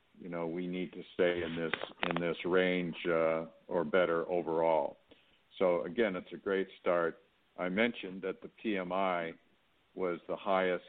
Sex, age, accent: male, 60-79, American